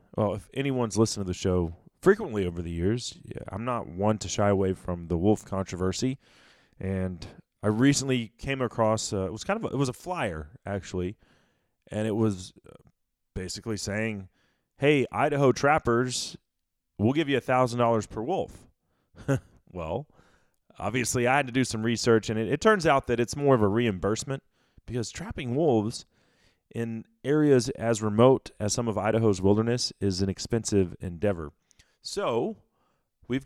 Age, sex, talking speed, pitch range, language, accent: 30-49, male, 165 wpm, 100-130 Hz, English, American